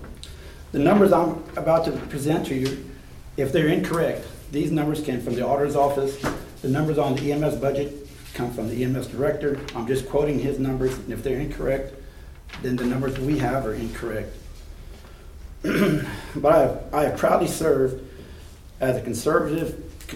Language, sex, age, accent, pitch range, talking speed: English, male, 40-59, American, 110-145 Hz, 160 wpm